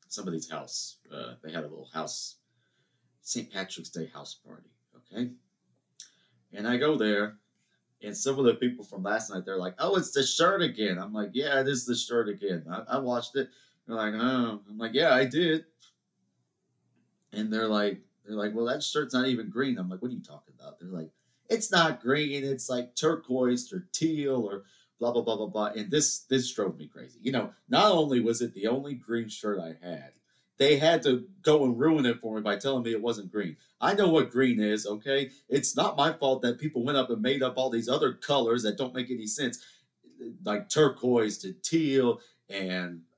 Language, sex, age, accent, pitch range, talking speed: English, male, 30-49, American, 105-135 Hz, 210 wpm